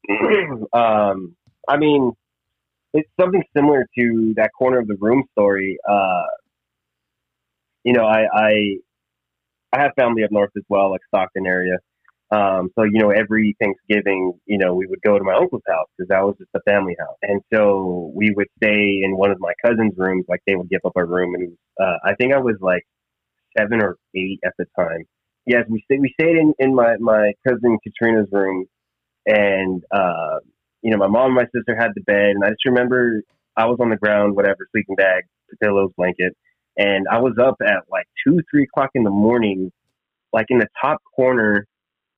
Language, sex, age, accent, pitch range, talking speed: English, male, 20-39, American, 95-120 Hz, 195 wpm